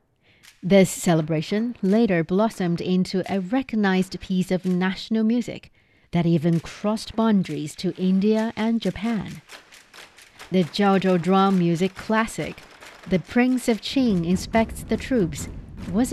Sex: female